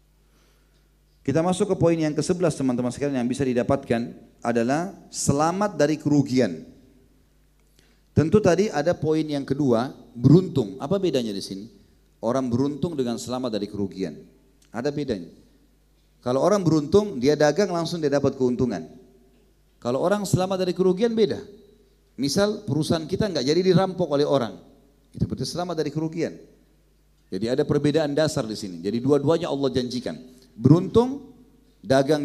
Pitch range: 125-170 Hz